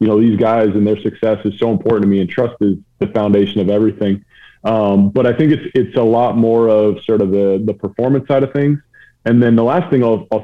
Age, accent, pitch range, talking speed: 20-39, American, 105-120 Hz, 255 wpm